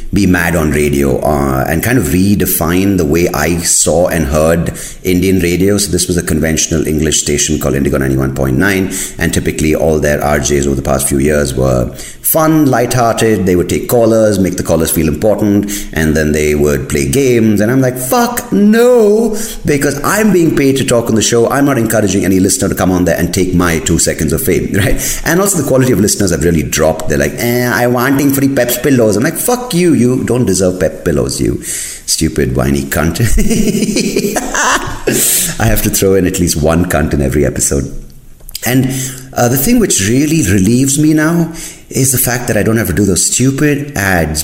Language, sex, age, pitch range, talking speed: English, male, 30-49, 80-125 Hz, 200 wpm